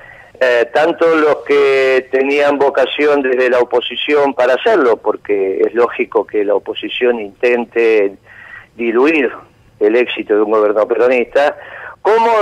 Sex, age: male, 50-69